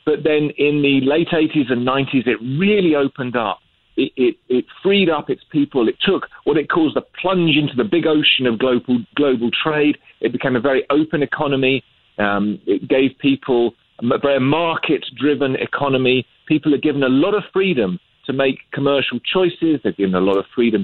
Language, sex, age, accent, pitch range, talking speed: English, male, 40-59, British, 120-155 Hz, 185 wpm